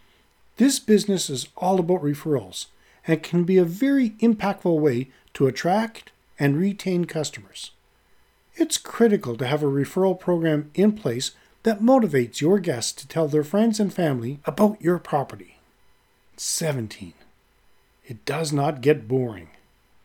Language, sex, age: English, male, 40-59